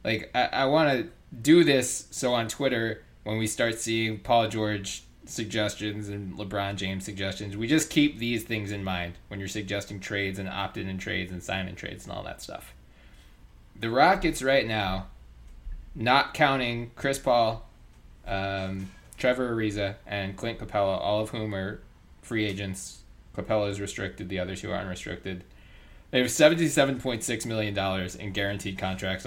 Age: 20-39